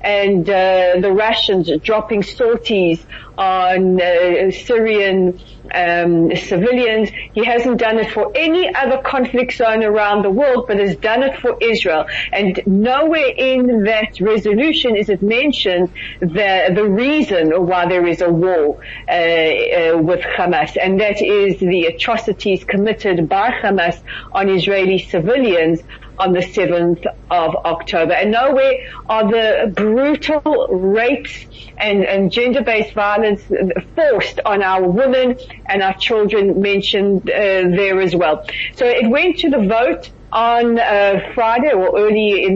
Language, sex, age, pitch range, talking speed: English, female, 40-59, 180-225 Hz, 140 wpm